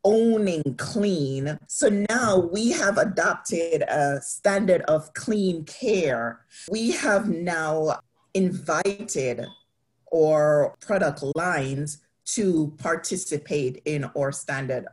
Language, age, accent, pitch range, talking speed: English, 40-59, American, 145-190 Hz, 95 wpm